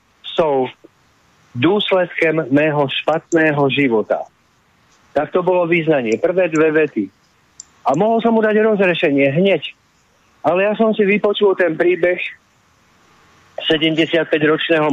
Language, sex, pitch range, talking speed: Slovak, male, 145-180 Hz, 105 wpm